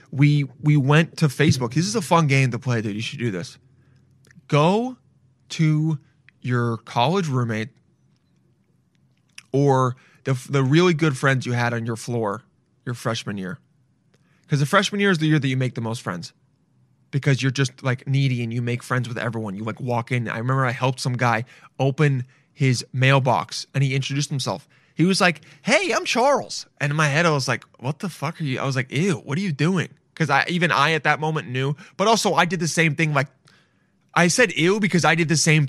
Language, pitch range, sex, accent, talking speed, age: English, 125-155 Hz, male, American, 215 wpm, 20-39